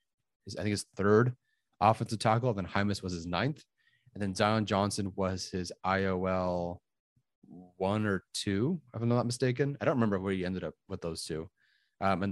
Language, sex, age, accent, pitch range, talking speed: English, male, 30-49, American, 95-115 Hz, 180 wpm